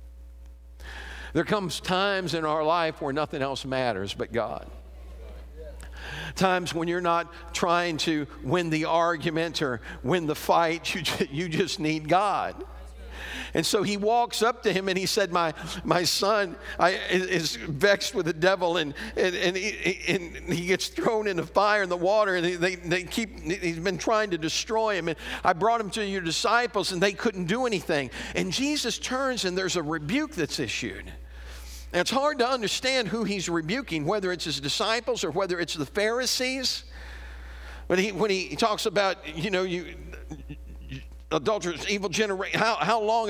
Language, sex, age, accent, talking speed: English, male, 50-69, American, 175 wpm